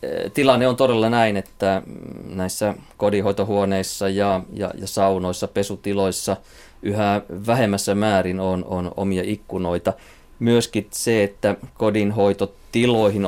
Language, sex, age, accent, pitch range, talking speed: Finnish, male, 20-39, native, 95-110 Hz, 105 wpm